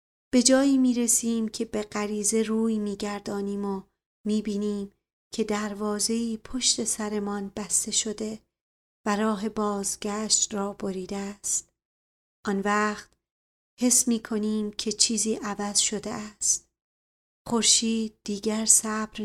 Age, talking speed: 40-59, 105 wpm